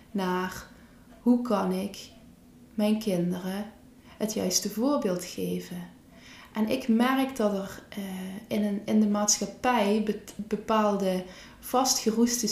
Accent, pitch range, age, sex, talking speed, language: Dutch, 195-240 Hz, 20-39, female, 105 wpm, Dutch